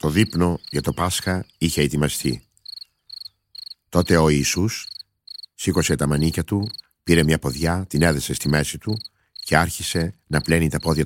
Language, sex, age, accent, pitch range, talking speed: Greek, male, 50-69, native, 75-95 Hz, 150 wpm